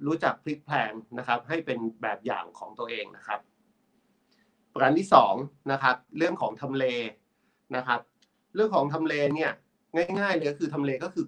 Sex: male